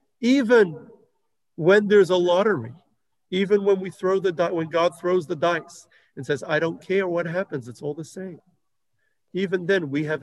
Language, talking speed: English, 175 wpm